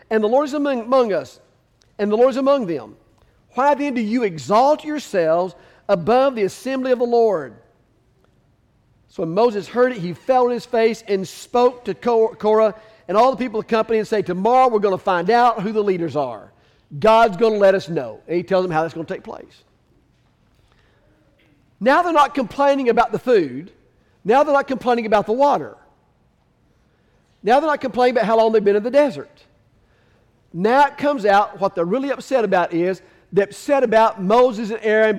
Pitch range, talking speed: 170-245 Hz, 195 wpm